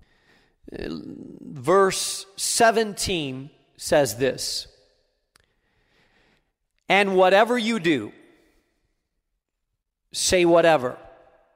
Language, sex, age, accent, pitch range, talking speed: English, male, 40-59, American, 140-195 Hz, 50 wpm